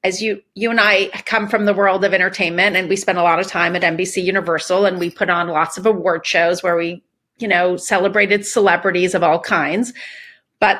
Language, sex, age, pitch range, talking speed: English, female, 40-59, 190-225 Hz, 215 wpm